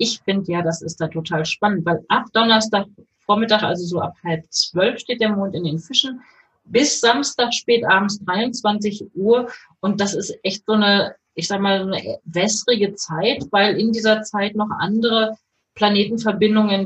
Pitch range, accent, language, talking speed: 185-220 Hz, German, German, 170 wpm